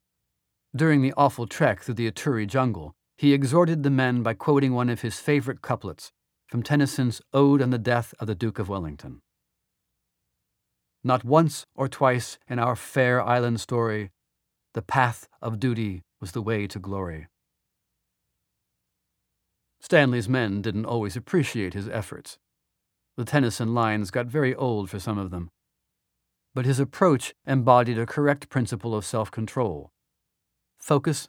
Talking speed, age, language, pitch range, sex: 145 wpm, 40-59, English, 105-135 Hz, male